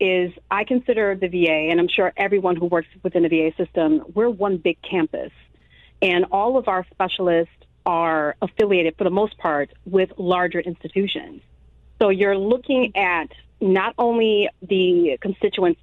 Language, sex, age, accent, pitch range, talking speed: English, female, 40-59, American, 165-200 Hz, 155 wpm